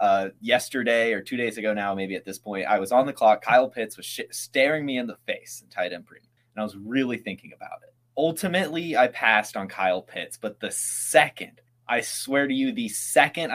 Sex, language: male, English